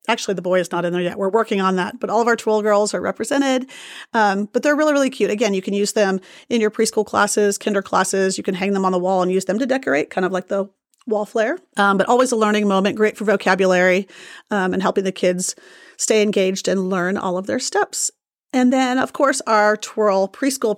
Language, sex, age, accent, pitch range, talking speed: English, female, 30-49, American, 195-250 Hz, 245 wpm